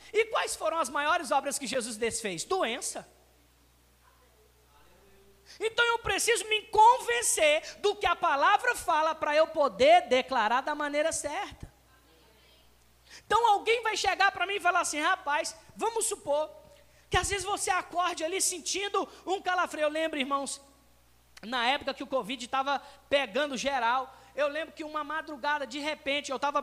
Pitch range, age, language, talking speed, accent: 275-335 Hz, 20-39, Portuguese, 155 wpm, Brazilian